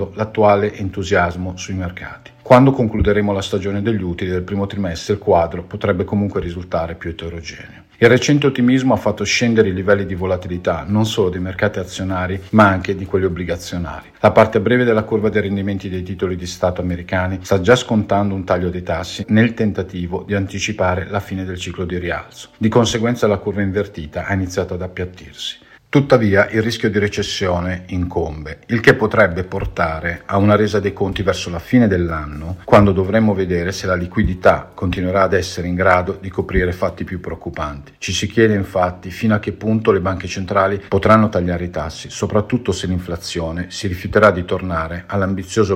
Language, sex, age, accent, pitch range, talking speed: Italian, male, 50-69, native, 90-105 Hz, 180 wpm